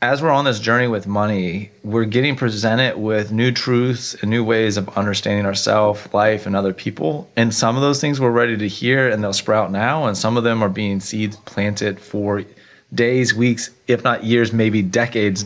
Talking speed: 200 wpm